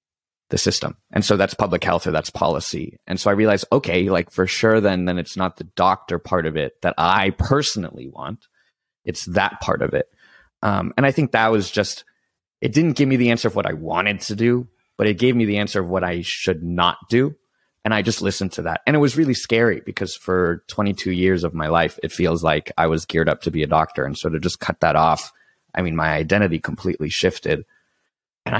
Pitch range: 90-115 Hz